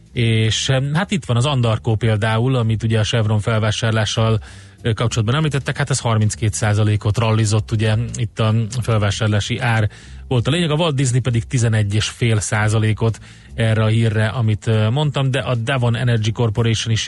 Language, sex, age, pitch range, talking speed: Hungarian, male, 30-49, 110-125 Hz, 150 wpm